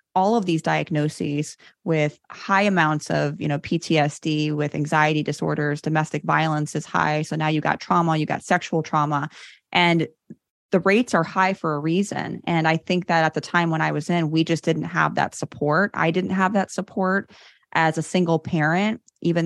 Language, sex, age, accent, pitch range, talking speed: English, female, 20-39, American, 150-185 Hz, 190 wpm